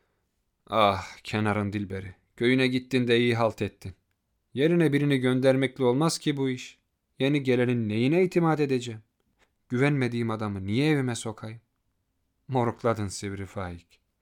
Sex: male